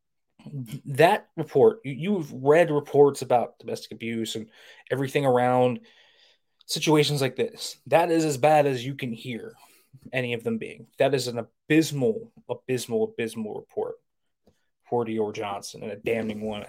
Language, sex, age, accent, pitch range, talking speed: English, male, 20-39, American, 120-150 Hz, 145 wpm